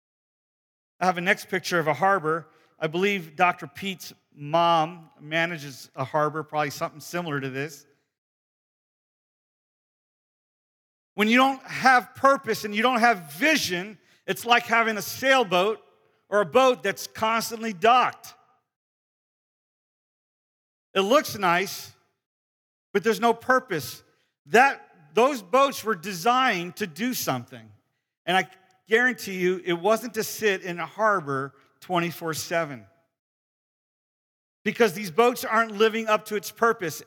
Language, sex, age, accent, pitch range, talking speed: English, male, 50-69, American, 160-220 Hz, 125 wpm